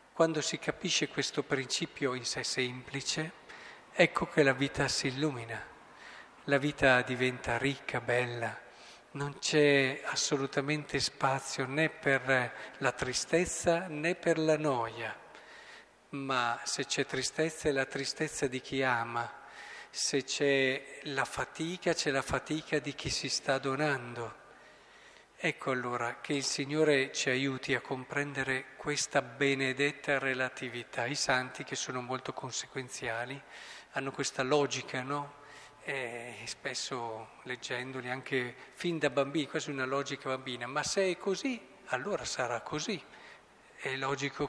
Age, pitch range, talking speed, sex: 40-59, 130-150 Hz, 130 wpm, male